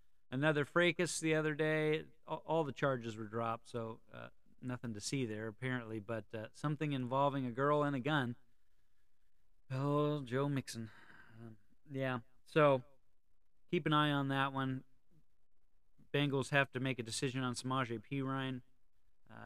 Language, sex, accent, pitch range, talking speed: English, male, American, 115-145 Hz, 145 wpm